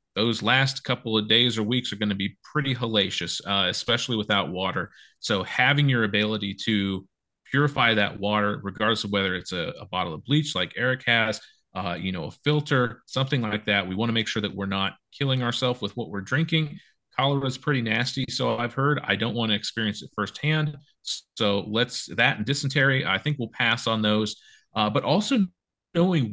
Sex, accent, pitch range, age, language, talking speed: male, American, 100-130 Hz, 40-59, English, 200 wpm